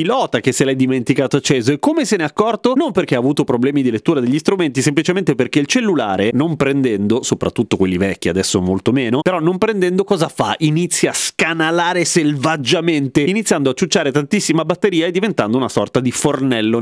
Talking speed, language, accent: 190 wpm, Italian, native